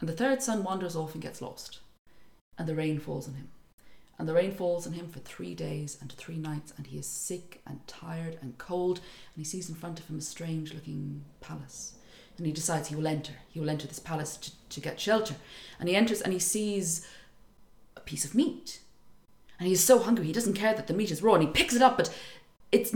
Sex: female